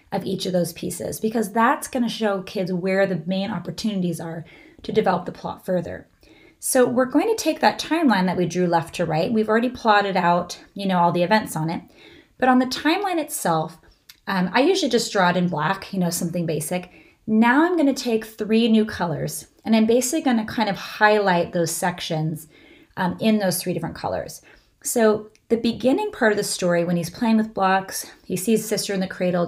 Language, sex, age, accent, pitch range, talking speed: English, female, 30-49, American, 180-220 Hz, 210 wpm